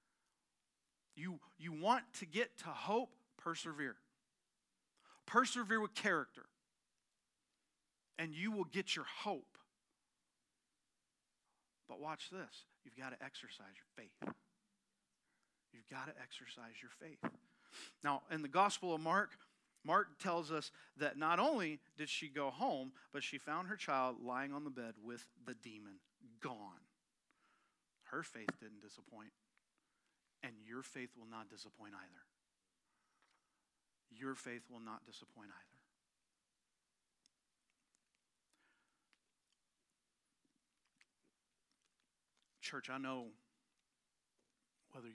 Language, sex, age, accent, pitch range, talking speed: English, male, 40-59, American, 120-165 Hz, 110 wpm